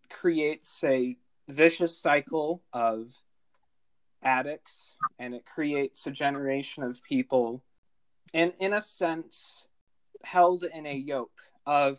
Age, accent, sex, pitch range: 30-49, American, male, 130-175 Hz